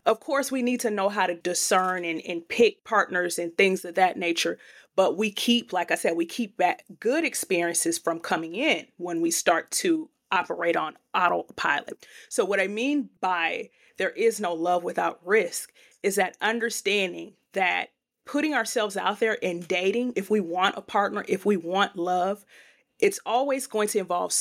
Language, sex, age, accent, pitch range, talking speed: English, female, 30-49, American, 185-250 Hz, 180 wpm